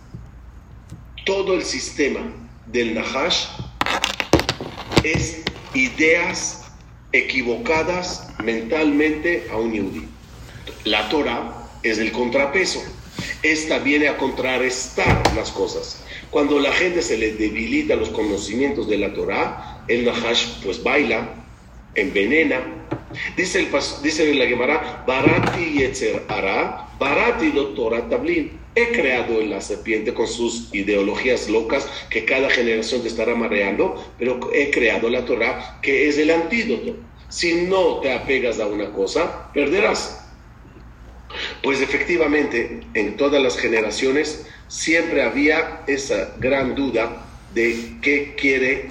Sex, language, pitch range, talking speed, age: male, English, 115-160 Hz, 120 wpm, 40-59